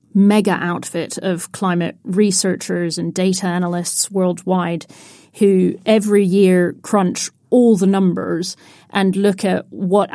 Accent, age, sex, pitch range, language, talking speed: British, 40-59, female, 185-220 Hz, English, 120 wpm